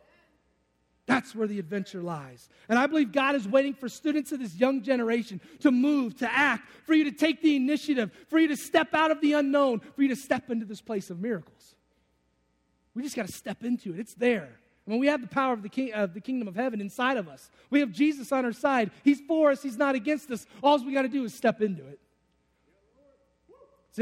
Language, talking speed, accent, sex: English, 235 wpm, American, male